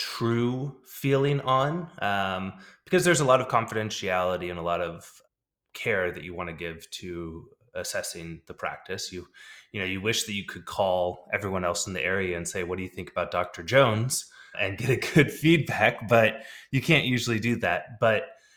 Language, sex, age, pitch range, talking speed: English, male, 20-39, 95-120 Hz, 190 wpm